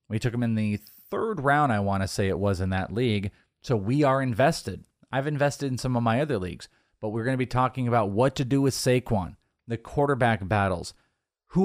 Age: 30-49